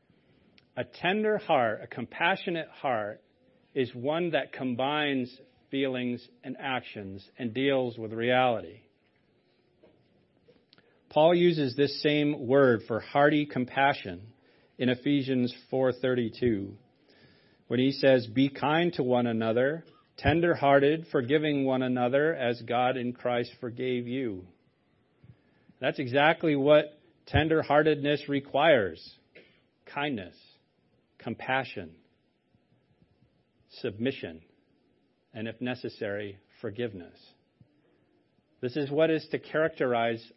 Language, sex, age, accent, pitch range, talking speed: English, male, 40-59, American, 115-145 Hz, 100 wpm